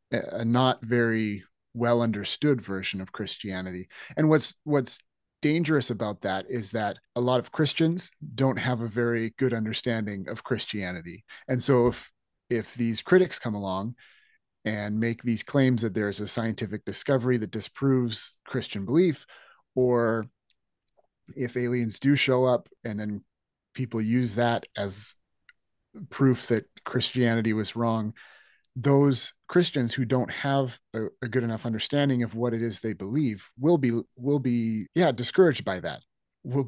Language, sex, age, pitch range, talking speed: English, male, 30-49, 110-135 Hz, 150 wpm